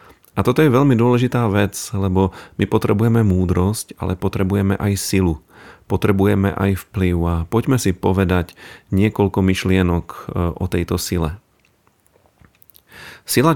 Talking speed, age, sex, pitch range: 120 wpm, 40-59, male, 95-110 Hz